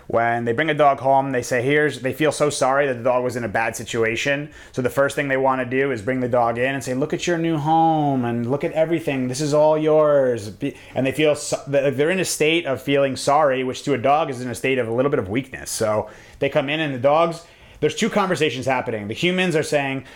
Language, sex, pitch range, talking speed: English, male, 125-150 Hz, 260 wpm